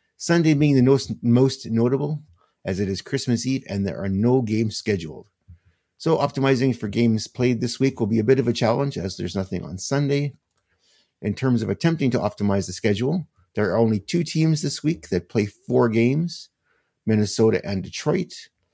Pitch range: 95-130 Hz